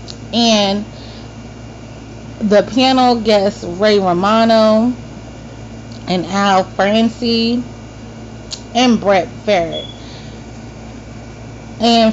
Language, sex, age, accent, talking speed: English, female, 30-49, American, 65 wpm